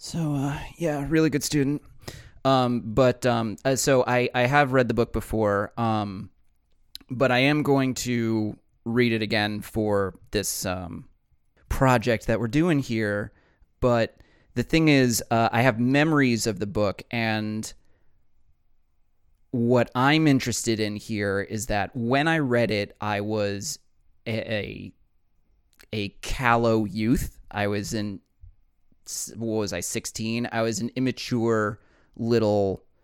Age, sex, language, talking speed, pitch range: 30-49, male, English, 140 wpm, 100-120 Hz